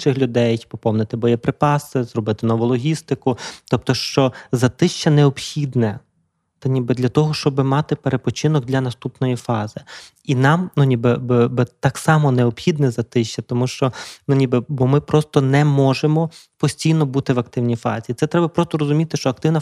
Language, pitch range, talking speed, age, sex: Ukrainian, 125-145 Hz, 155 wpm, 20-39, male